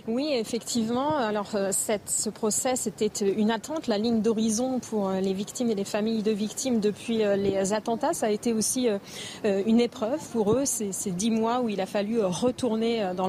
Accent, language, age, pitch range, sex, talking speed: French, French, 40-59, 205-235 Hz, female, 180 wpm